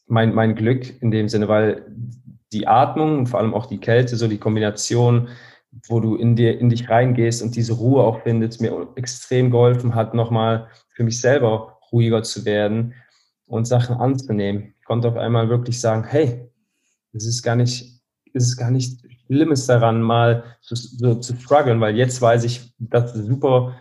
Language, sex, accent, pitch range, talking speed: German, male, German, 110-125 Hz, 180 wpm